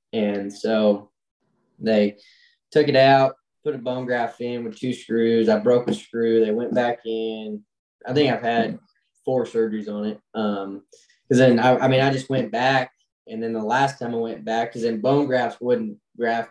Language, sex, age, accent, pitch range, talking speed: English, male, 10-29, American, 110-130 Hz, 195 wpm